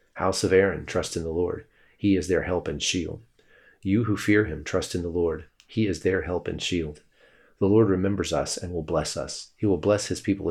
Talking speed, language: 230 wpm, English